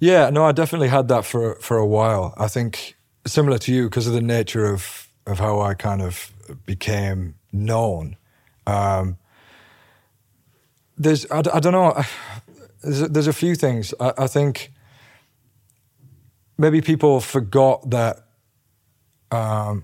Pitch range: 105-130 Hz